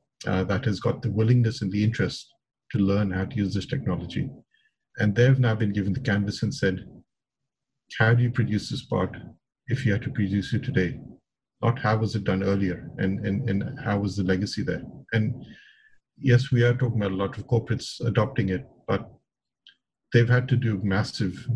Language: English